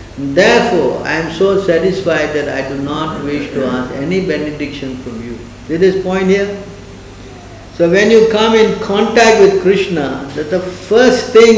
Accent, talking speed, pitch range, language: Indian, 165 wpm, 115-165 Hz, English